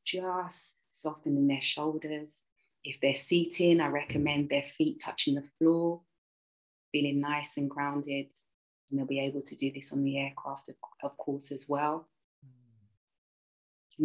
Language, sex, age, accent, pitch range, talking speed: English, female, 30-49, British, 140-160 Hz, 145 wpm